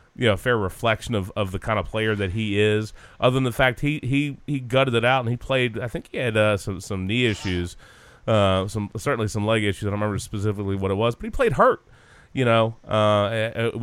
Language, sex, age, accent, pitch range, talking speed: English, male, 30-49, American, 100-120 Hz, 245 wpm